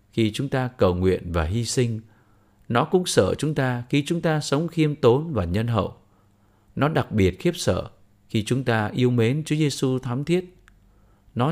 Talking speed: 200 wpm